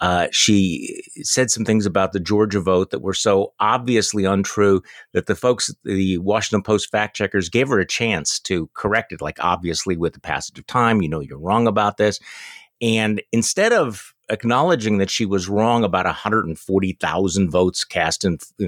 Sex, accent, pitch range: male, American, 95-130 Hz